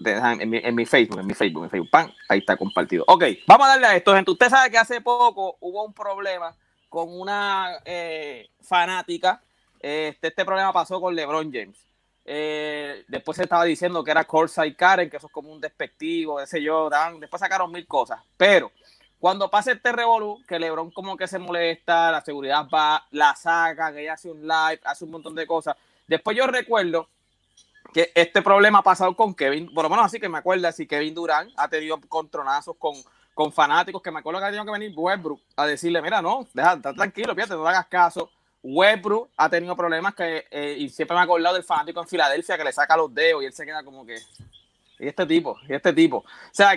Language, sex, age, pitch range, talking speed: English, male, 30-49, 160-210 Hz, 220 wpm